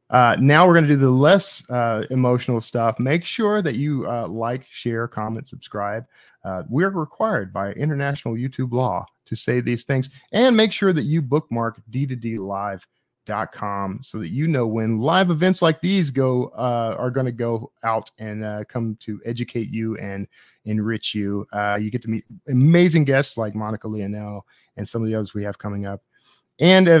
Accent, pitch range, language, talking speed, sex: American, 110-140 Hz, English, 185 wpm, male